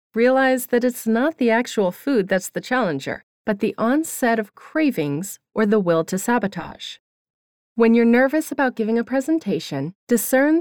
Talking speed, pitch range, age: 160 wpm, 180-240 Hz, 30-49